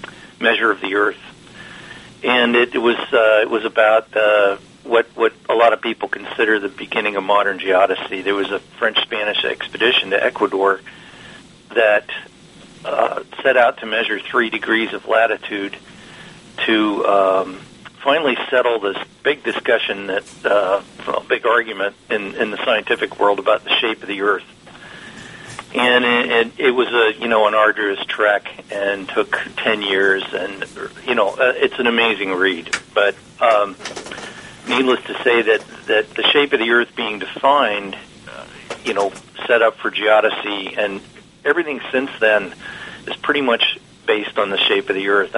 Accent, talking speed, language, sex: American, 155 wpm, English, male